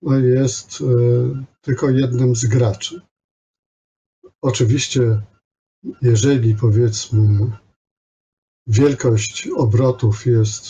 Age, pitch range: 50-69, 110-130 Hz